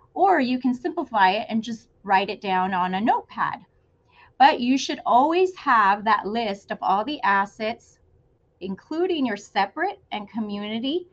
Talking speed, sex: 155 wpm, female